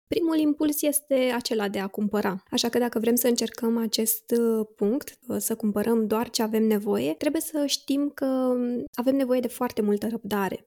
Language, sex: Romanian, female